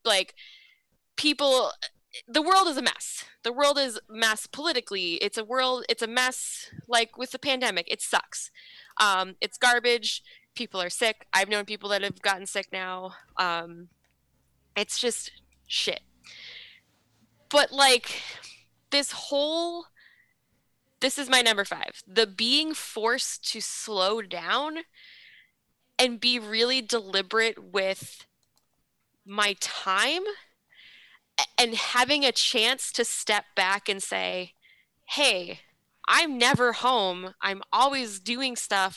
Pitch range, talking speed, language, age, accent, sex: 185-250 Hz, 125 wpm, English, 10-29, American, female